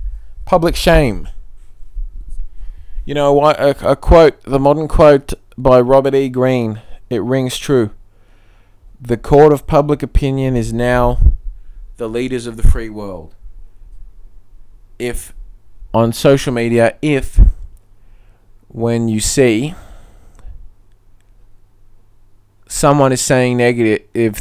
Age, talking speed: 20-39, 105 wpm